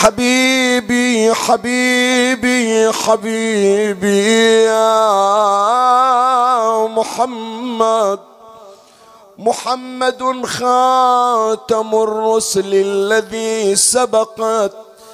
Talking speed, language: 40 wpm, Arabic